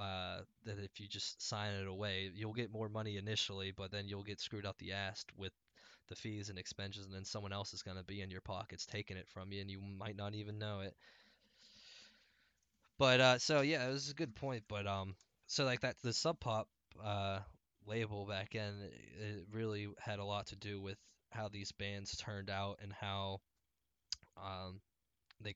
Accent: American